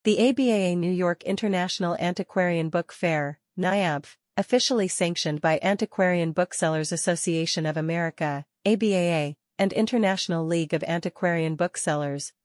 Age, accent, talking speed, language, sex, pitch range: 40-59, American, 115 wpm, English, female, 165-195 Hz